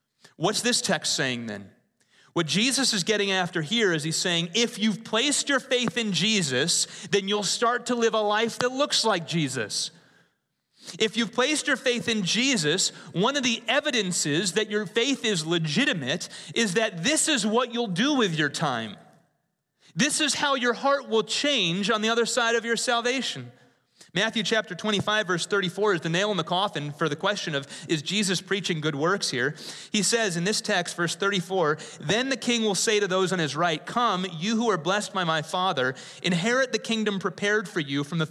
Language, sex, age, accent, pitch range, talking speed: English, male, 30-49, American, 175-240 Hz, 195 wpm